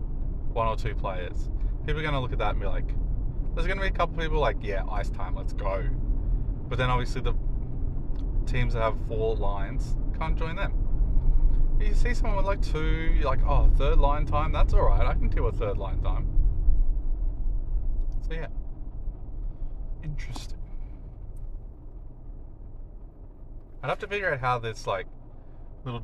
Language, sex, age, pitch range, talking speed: English, male, 20-39, 100-120 Hz, 170 wpm